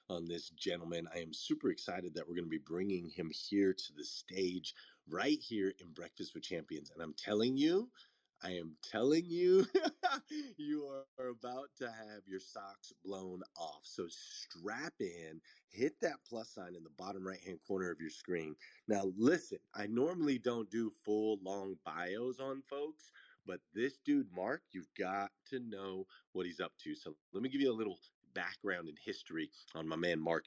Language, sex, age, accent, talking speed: English, male, 30-49, American, 185 wpm